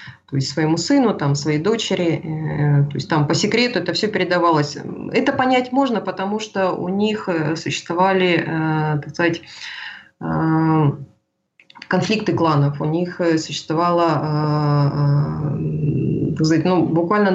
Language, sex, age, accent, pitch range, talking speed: Russian, female, 20-39, native, 150-205 Hz, 120 wpm